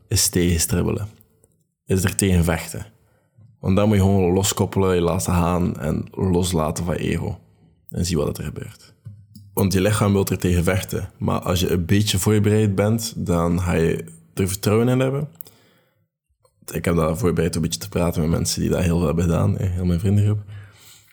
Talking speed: 185 wpm